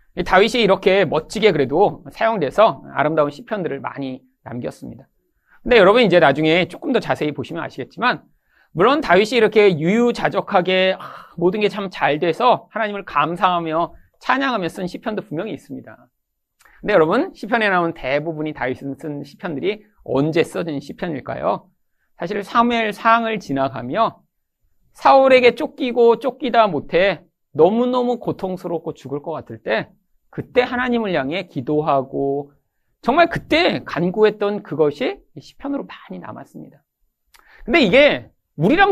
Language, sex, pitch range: Korean, male, 160-245 Hz